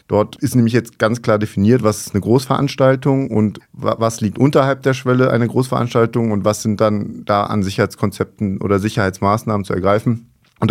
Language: German